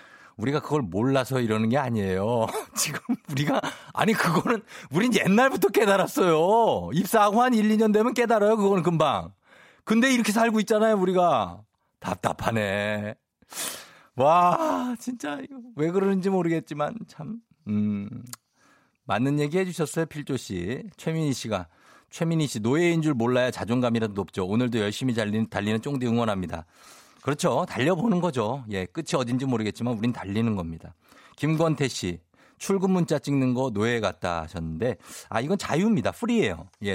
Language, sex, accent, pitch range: Korean, male, native, 110-180 Hz